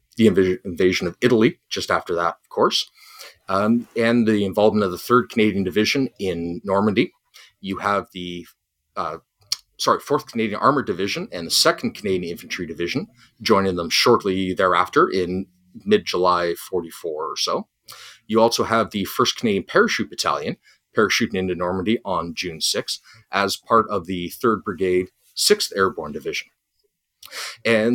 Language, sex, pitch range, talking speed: English, male, 90-120 Hz, 145 wpm